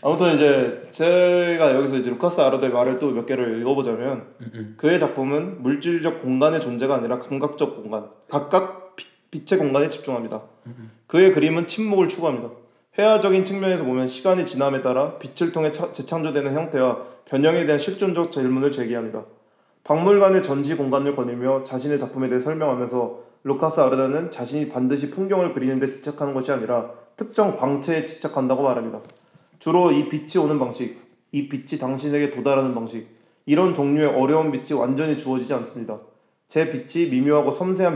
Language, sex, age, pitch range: Korean, male, 20-39, 130-165 Hz